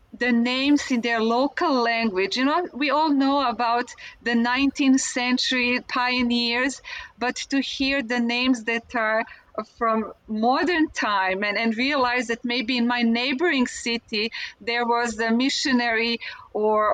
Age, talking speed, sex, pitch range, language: 40-59, 140 wpm, female, 230-265 Hz, English